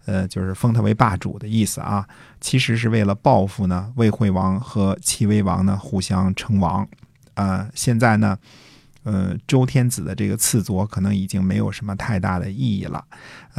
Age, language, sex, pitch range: 50-69, Chinese, male, 95-125 Hz